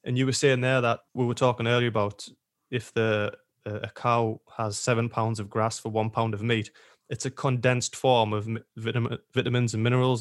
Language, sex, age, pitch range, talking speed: English, male, 20-39, 115-130 Hz, 205 wpm